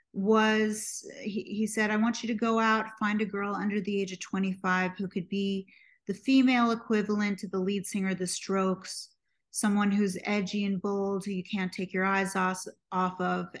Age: 30-49